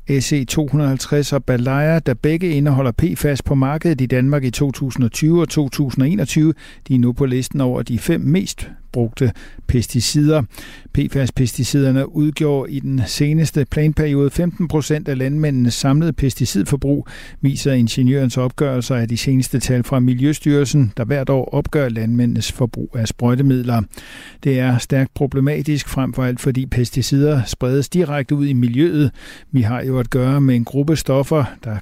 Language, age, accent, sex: Danish, 60-79, native, male